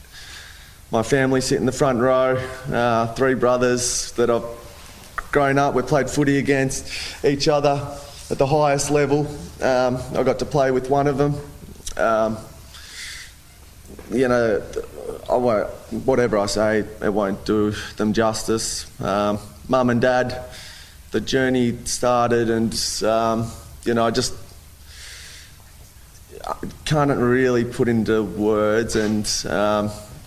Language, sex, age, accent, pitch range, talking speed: English, male, 20-39, Australian, 105-130 Hz, 135 wpm